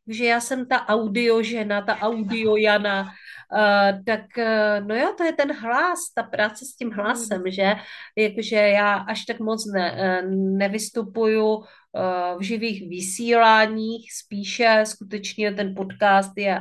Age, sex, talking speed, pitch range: 40-59, female, 130 wpm, 190-225 Hz